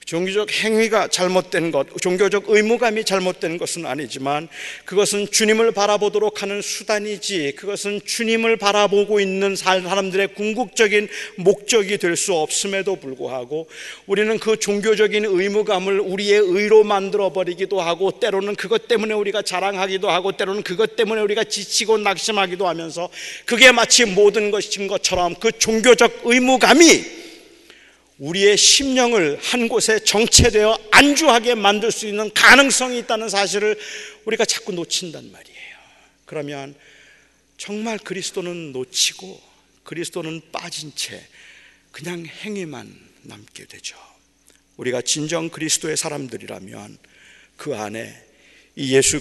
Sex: male